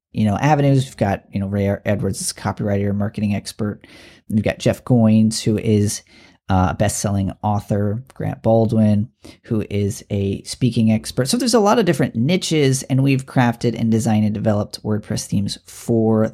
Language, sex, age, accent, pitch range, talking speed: English, male, 40-59, American, 105-145 Hz, 170 wpm